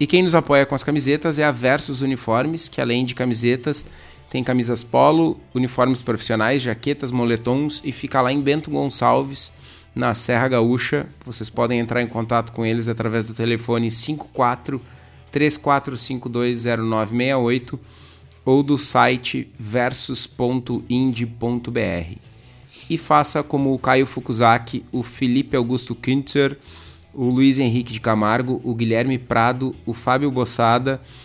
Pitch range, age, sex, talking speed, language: 115-135 Hz, 30-49, male, 130 wpm, Portuguese